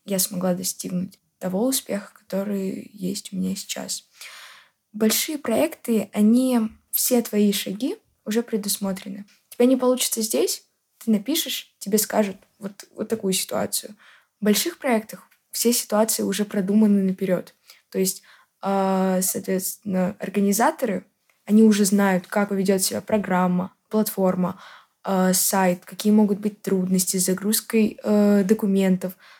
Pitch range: 190-215 Hz